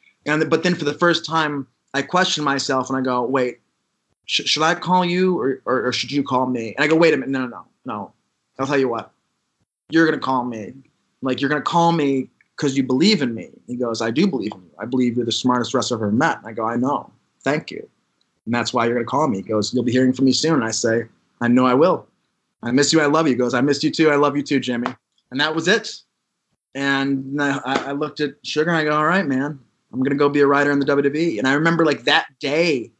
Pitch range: 130-150 Hz